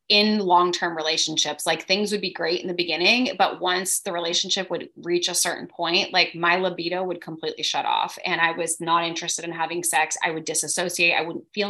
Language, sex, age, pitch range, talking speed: English, female, 20-39, 165-190 Hz, 210 wpm